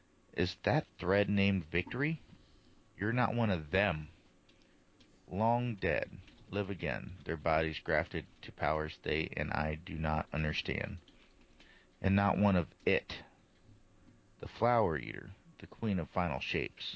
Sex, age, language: male, 40-59, English